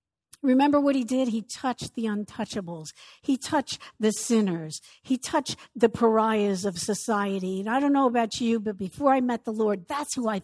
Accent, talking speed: American, 190 wpm